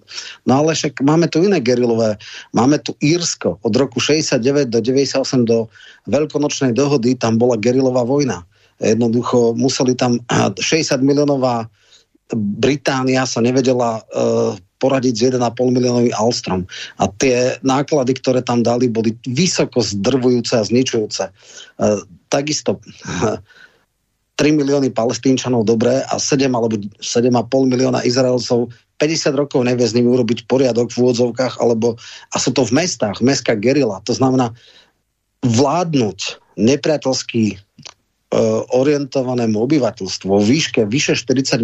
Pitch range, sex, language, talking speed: 115-135 Hz, male, Slovak, 125 wpm